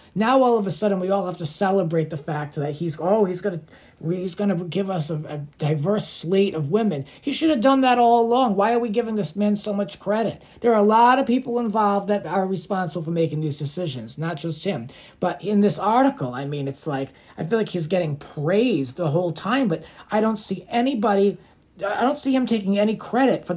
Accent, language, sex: American, English, male